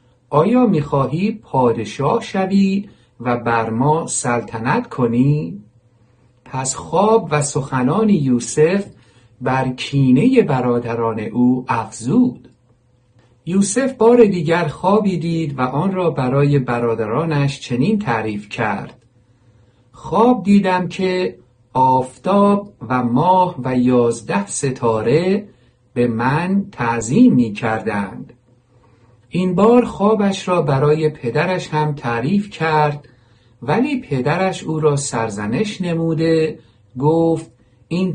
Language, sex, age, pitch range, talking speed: Persian, male, 50-69, 120-170 Hz, 100 wpm